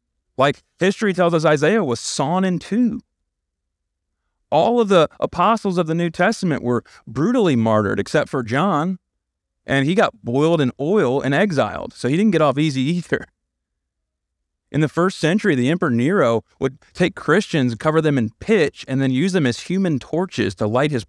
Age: 30-49